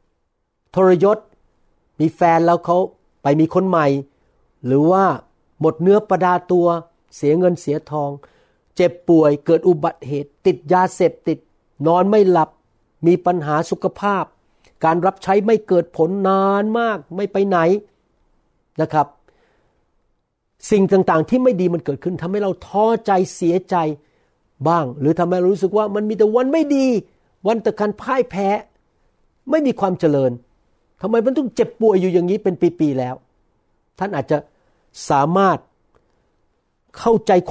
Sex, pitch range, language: male, 155-200 Hz, Thai